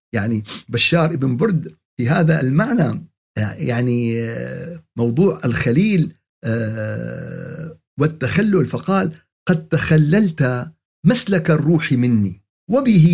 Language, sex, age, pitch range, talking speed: Arabic, male, 50-69, 120-170 Hz, 80 wpm